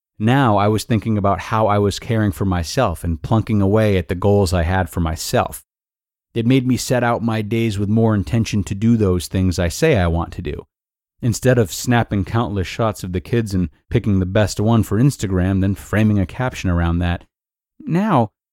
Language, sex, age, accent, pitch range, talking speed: English, male, 30-49, American, 95-120 Hz, 205 wpm